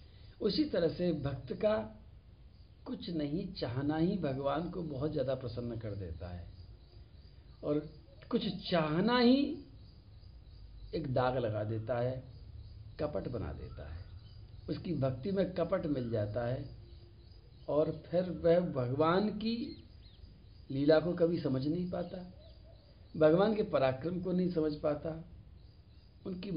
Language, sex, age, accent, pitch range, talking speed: Hindi, male, 60-79, native, 105-160 Hz, 125 wpm